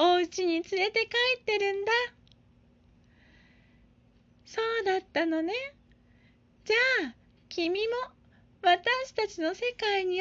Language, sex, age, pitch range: Japanese, female, 30-49, 320-445 Hz